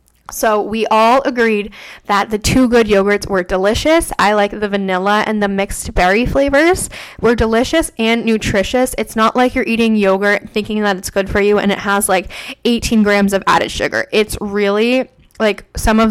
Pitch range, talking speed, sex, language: 205-250 Hz, 185 wpm, female, English